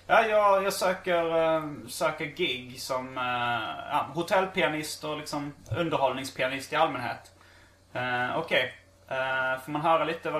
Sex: male